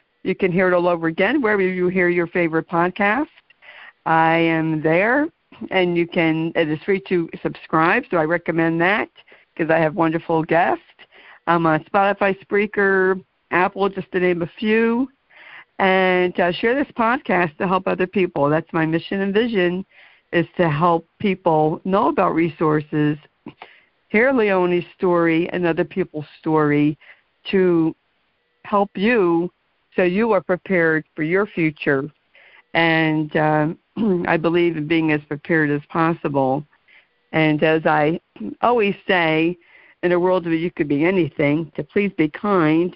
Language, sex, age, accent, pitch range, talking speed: English, female, 60-79, American, 165-205 Hz, 155 wpm